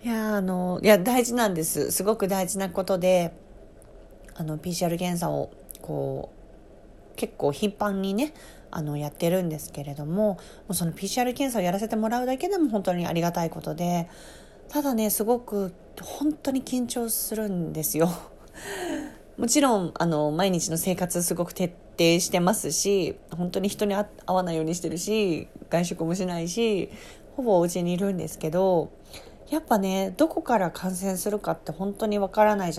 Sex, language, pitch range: female, Japanese, 170-215 Hz